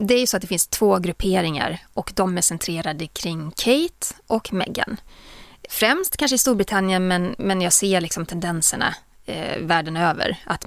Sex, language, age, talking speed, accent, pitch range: female, English, 30-49, 175 wpm, Swedish, 175-250 Hz